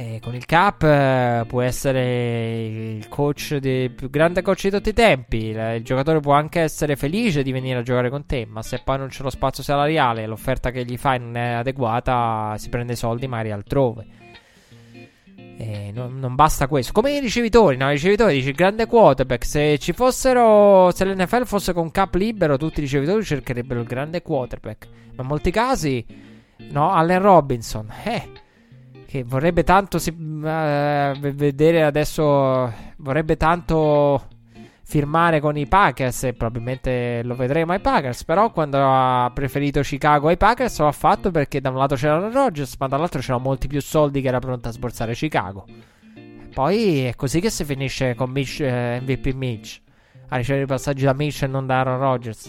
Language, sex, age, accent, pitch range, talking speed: Italian, male, 20-39, native, 125-160 Hz, 180 wpm